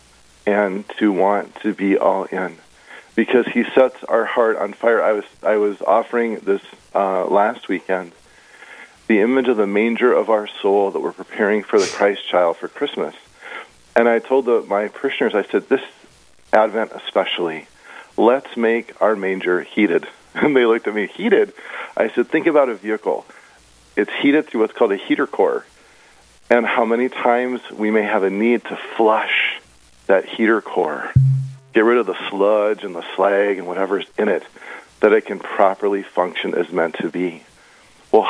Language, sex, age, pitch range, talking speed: English, male, 40-59, 95-120 Hz, 175 wpm